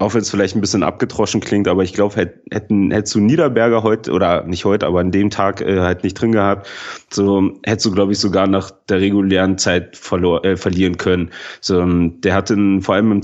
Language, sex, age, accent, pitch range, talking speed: German, male, 30-49, German, 90-105 Hz, 220 wpm